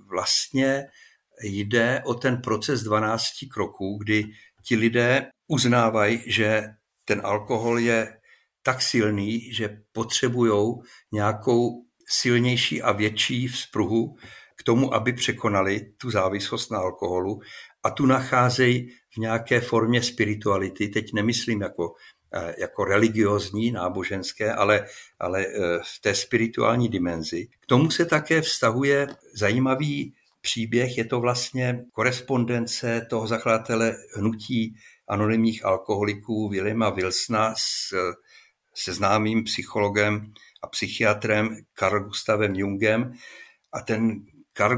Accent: native